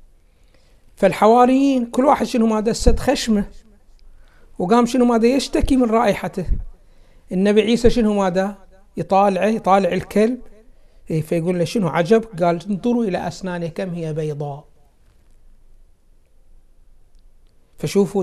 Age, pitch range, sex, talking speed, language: 60-79, 135-200 Hz, male, 110 wpm, Arabic